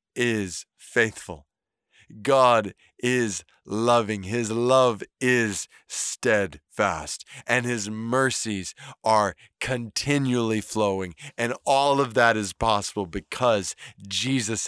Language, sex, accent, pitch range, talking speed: English, male, American, 110-135 Hz, 95 wpm